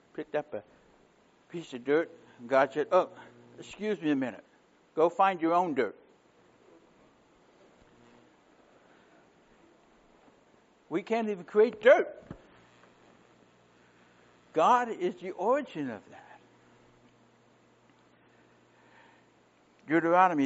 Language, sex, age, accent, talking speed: English, male, 60-79, American, 90 wpm